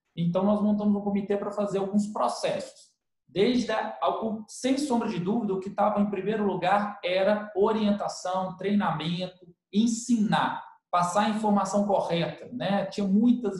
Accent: Brazilian